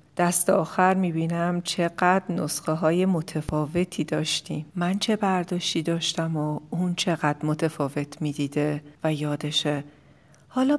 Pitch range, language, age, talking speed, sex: 145-175 Hz, Persian, 40-59, 115 wpm, female